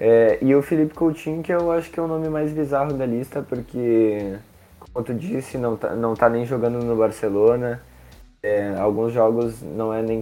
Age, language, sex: 20-39, Portuguese, male